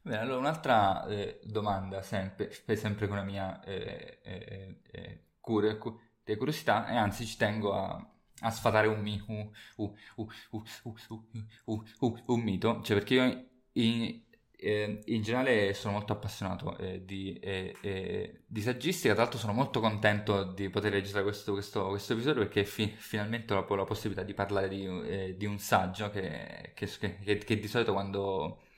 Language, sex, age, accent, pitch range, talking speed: Italian, male, 20-39, native, 100-110 Hz, 100 wpm